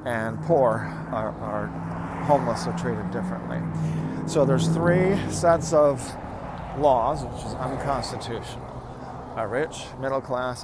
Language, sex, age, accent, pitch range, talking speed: English, male, 40-59, American, 105-130 Hz, 120 wpm